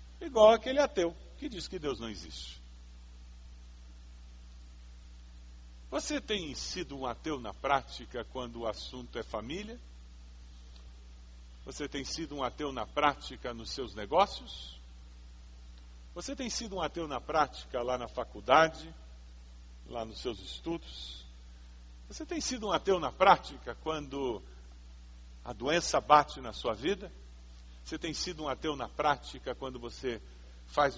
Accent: Brazilian